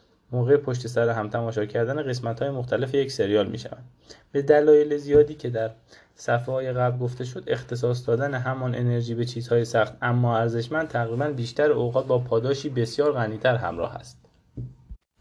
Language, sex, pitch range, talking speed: Persian, male, 115-140 Hz, 160 wpm